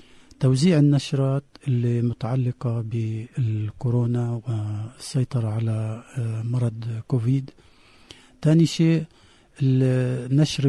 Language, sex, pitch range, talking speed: Arabic, male, 120-150 Hz, 65 wpm